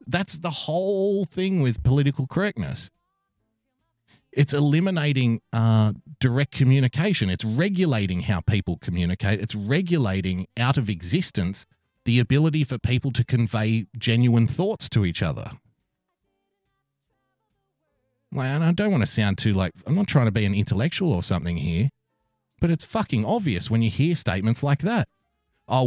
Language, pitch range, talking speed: English, 110-160 Hz, 145 wpm